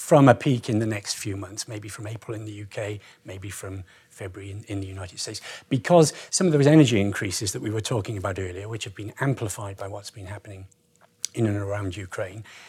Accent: British